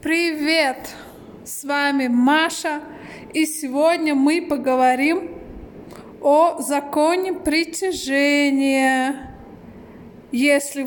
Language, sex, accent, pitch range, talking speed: Russian, female, native, 270-335 Hz, 65 wpm